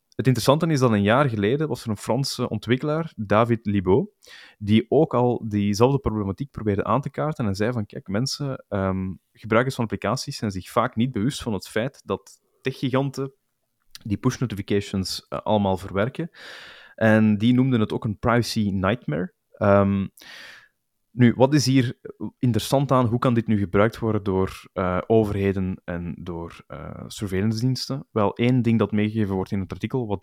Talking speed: 175 wpm